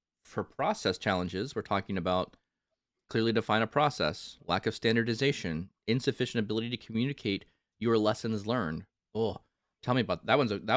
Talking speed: 155 wpm